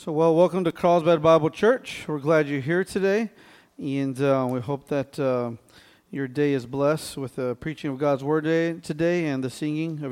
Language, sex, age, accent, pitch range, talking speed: English, male, 40-59, American, 140-175 Hz, 195 wpm